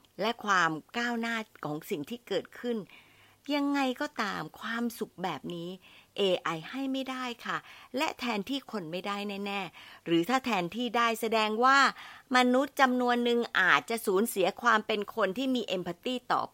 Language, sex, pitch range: Thai, female, 185-250 Hz